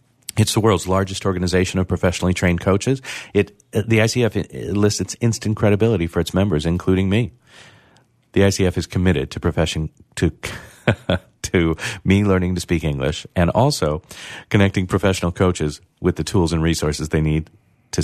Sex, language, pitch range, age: male, English, 85-105 Hz, 40-59